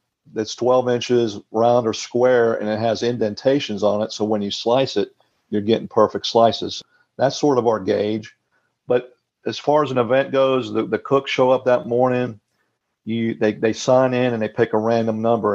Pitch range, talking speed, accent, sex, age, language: 110-125 Hz, 195 wpm, American, male, 50-69, English